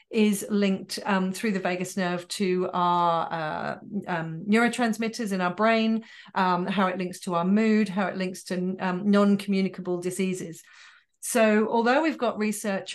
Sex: female